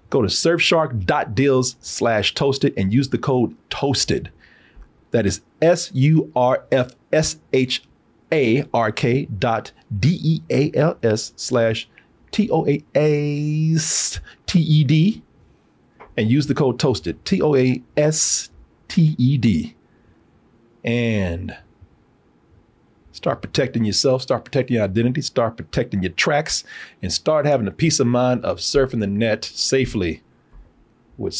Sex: male